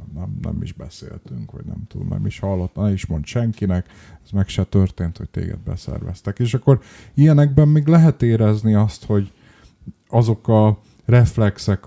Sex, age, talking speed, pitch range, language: male, 30-49, 160 wpm, 95-110 Hz, Hungarian